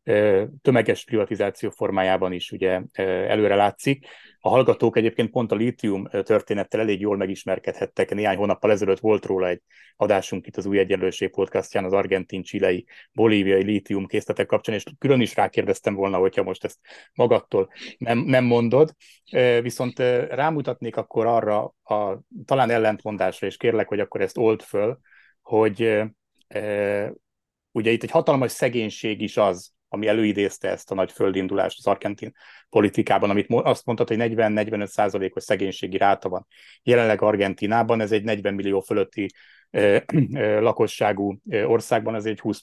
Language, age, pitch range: Hungarian, 30-49, 100-115 Hz